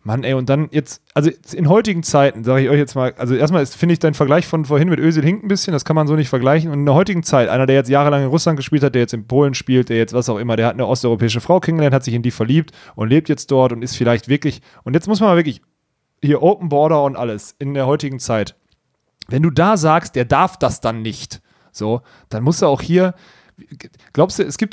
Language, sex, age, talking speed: German, male, 30-49, 265 wpm